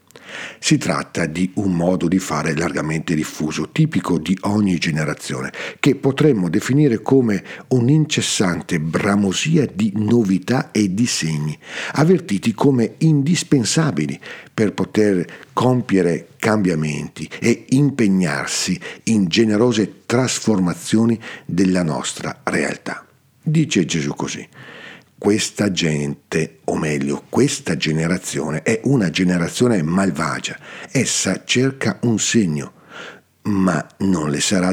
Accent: native